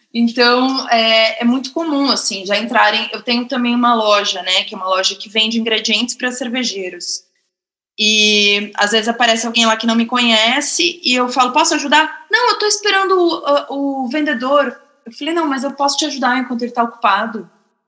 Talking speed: 190 wpm